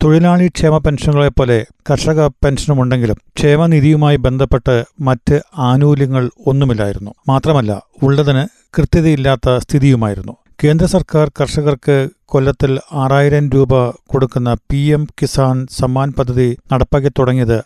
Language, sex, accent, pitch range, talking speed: Malayalam, male, native, 125-150 Hz, 90 wpm